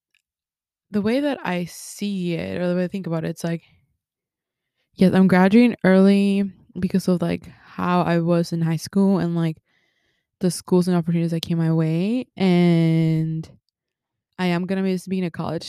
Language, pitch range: English, 170-195 Hz